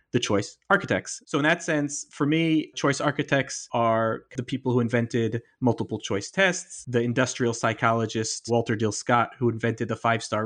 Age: 30-49